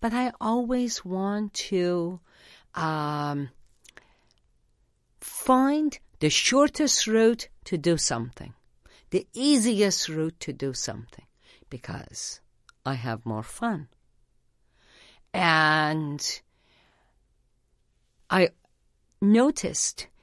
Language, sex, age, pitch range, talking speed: English, female, 50-69, 160-265 Hz, 75 wpm